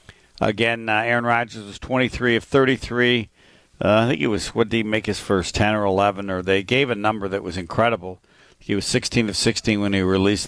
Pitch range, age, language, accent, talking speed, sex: 90-115 Hz, 60-79, English, American, 220 wpm, male